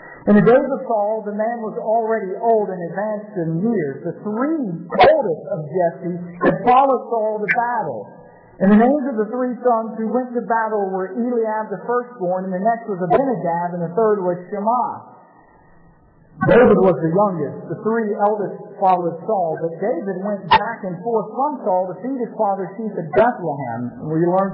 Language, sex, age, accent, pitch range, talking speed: English, male, 50-69, American, 185-235 Hz, 185 wpm